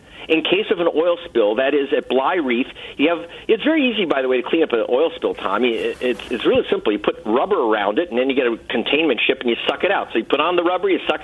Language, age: English, 50-69